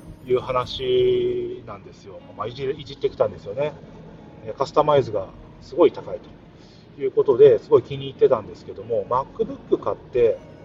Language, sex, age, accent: Japanese, male, 40-59, native